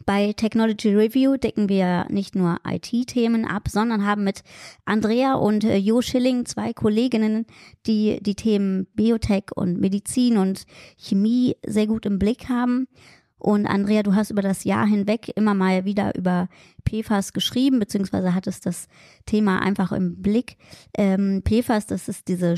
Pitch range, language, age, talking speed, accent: 190-225 Hz, German, 20-39, 150 wpm, German